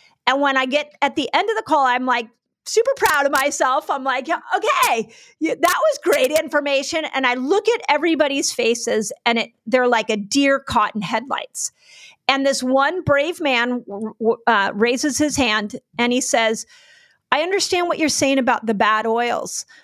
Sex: female